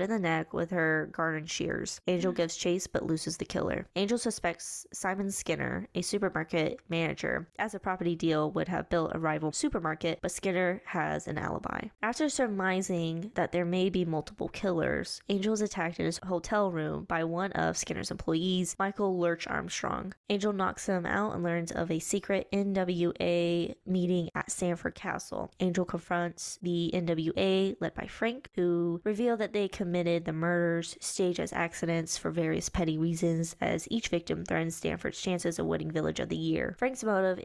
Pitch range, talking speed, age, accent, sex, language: 170-195 Hz, 175 wpm, 10-29, American, female, English